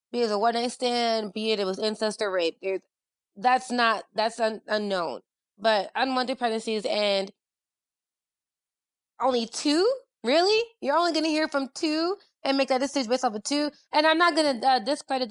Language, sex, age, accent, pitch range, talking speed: English, female, 20-39, American, 215-265 Hz, 180 wpm